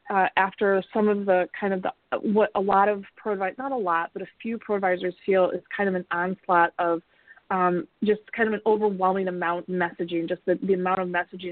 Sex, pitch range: female, 185-220 Hz